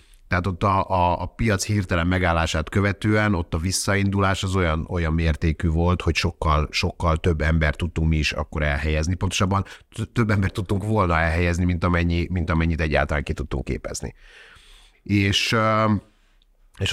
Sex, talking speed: male, 150 wpm